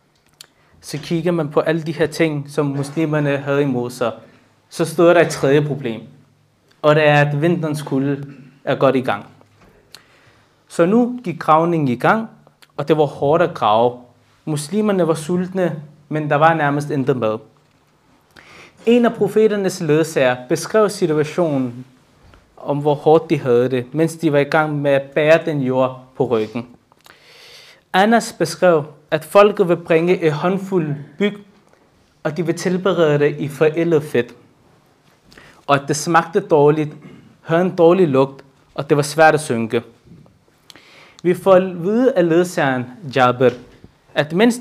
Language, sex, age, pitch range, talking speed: Danish, male, 20-39, 140-180 Hz, 155 wpm